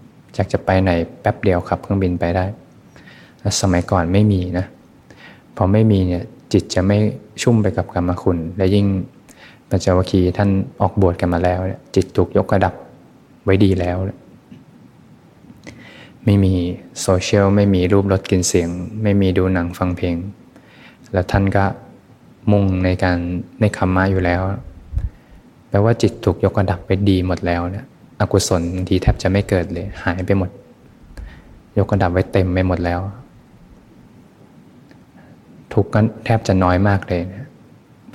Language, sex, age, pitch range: Thai, male, 20-39, 90-100 Hz